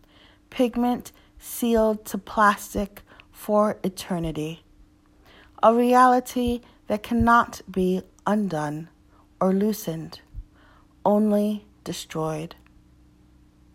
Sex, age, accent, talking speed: female, 40-59, American, 70 wpm